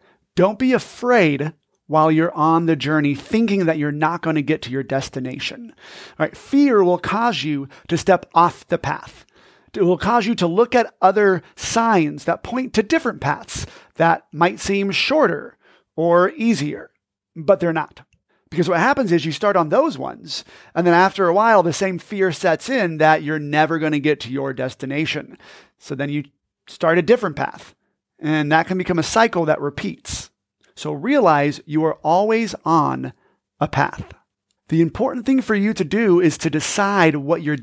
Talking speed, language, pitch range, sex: 185 wpm, English, 150-195 Hz, male